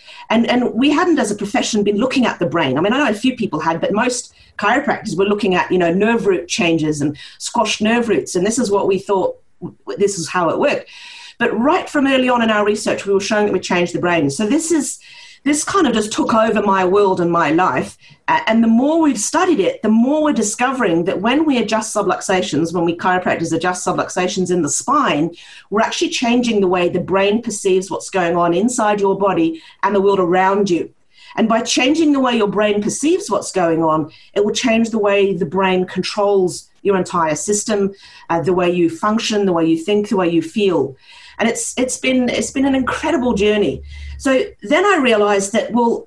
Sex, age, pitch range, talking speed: female, 40-59, 185-250 Hz, 220 wpm